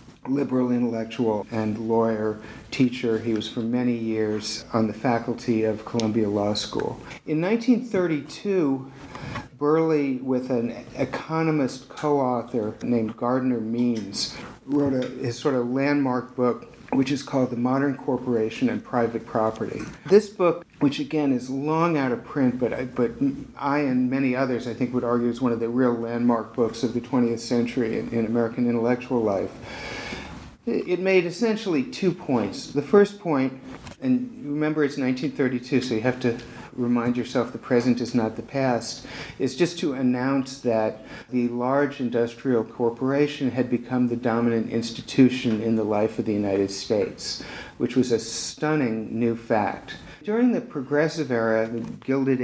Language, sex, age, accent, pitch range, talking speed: English, male, 50-69, American, 115-140 Hz, 155 wpm